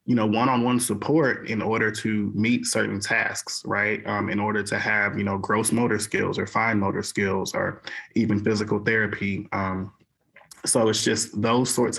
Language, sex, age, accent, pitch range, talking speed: English, male, 20-39, American, 100-115 Hz, 175 wpm